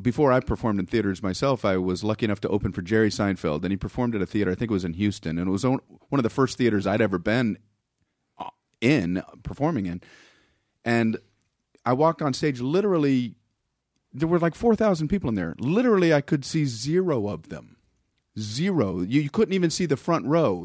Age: 40-59